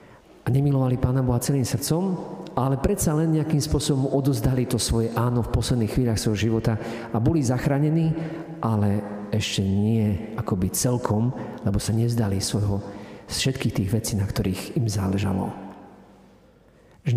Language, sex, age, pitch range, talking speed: Slovak, male, 50-69, 100-130 Hz, 145 wpm